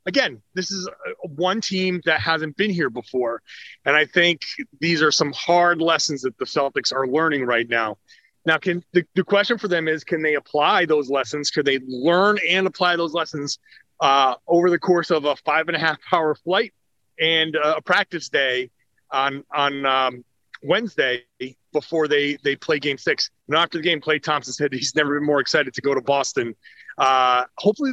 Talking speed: 185 wpm